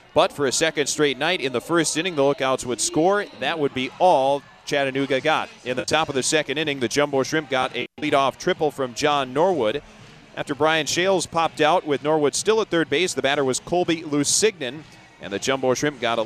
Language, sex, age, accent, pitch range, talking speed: English, male, 40-59, American, 135-170 Hz, 220 wpm